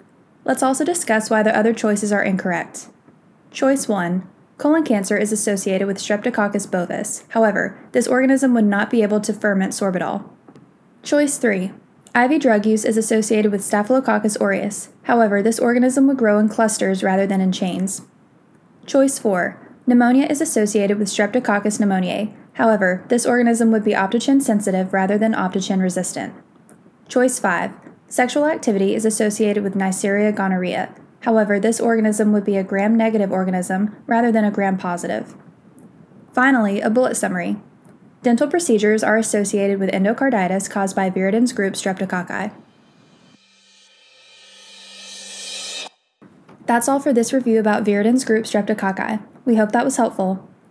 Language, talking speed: English, 135 wpm